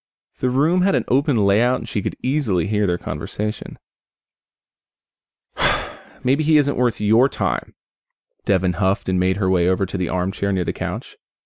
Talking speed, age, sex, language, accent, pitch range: 170 wpm, 30-49, male, English, American, 95-125 Hz